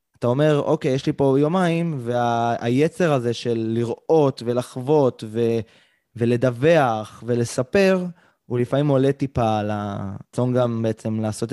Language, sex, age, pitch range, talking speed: Hebrew, male, 20-39, 115-155 Hz, 130 wpm